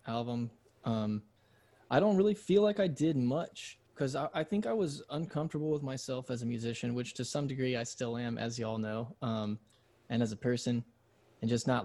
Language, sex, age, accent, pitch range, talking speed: English, male, 20-39, American, 110-130 Hz, 205 wpm